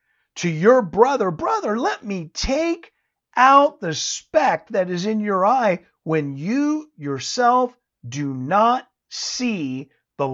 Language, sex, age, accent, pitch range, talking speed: English, male, 50-69, American, 145-220 Hz, 130 wpm